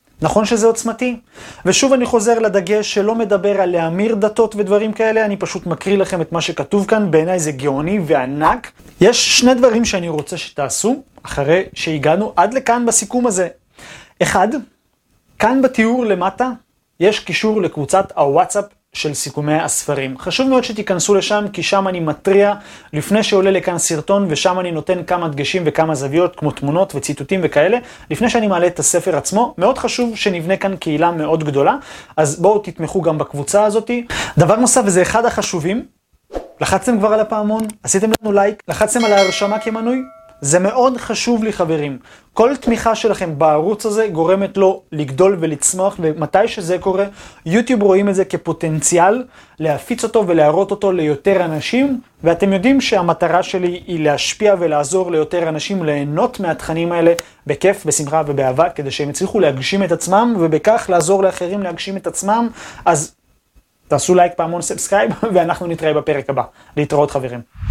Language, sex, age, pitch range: Hebrew, male, 30-49, 160-215 Hz